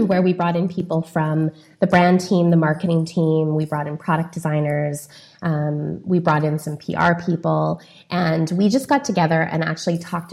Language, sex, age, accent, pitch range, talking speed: English, female, 20-39, American, 155-185 Hz, 185 wpm